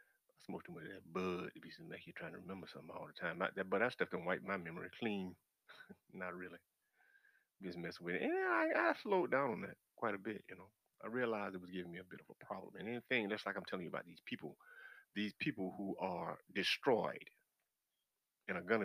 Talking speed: 230 wpm